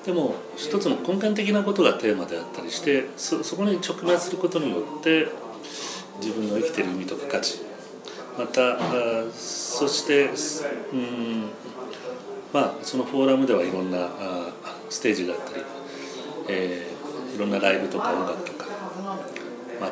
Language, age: Japanese, 40-59